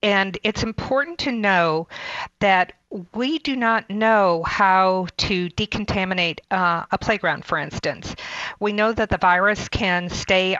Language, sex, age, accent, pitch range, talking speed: English, female, 50-69, American, 180-225 Hz, 140 wpm